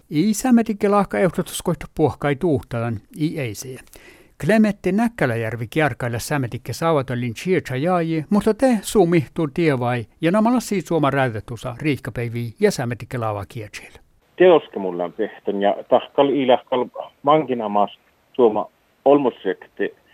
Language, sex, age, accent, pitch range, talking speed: Finnish, male, 60-79, native, 120-160 Hz, 115 wpm